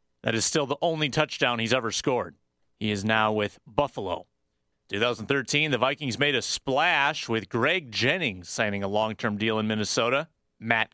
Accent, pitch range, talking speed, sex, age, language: American, 110-135 Hz, 165 wpm, male, 30-49, English